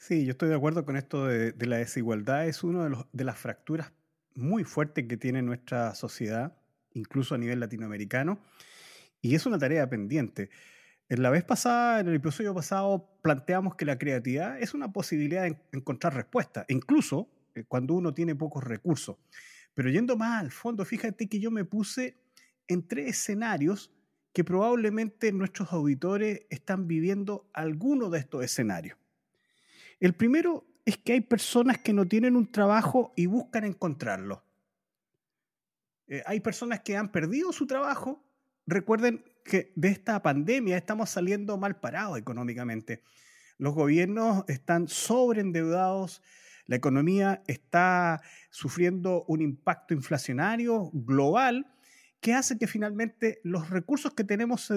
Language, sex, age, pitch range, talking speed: Spanish, male, 30-49, 145-225 Hz, 145 wpm